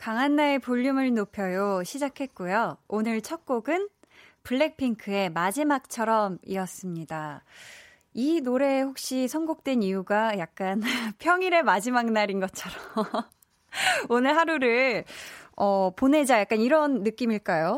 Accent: native